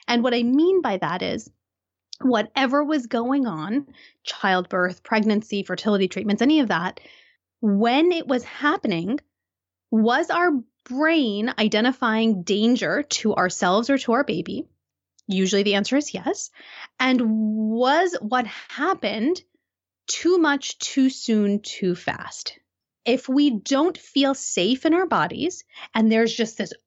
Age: 20-39